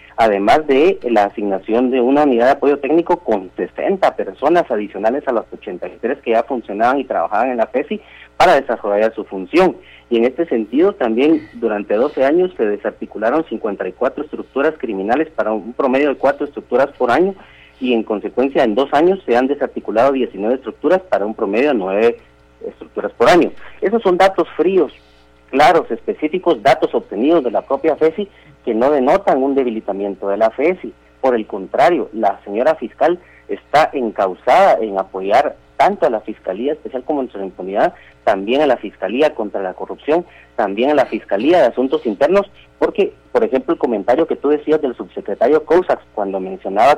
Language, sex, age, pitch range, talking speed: Spanish, male, 40-59, 100-160 Hz, 170 wpm